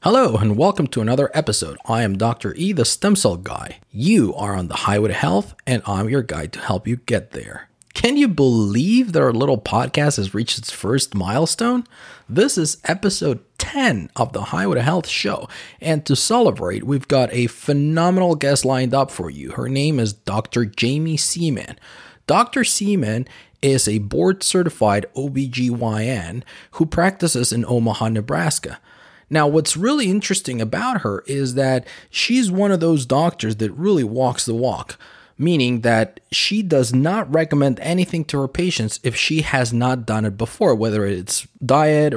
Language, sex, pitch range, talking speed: English, male, 115-160 Hz, 170 wpm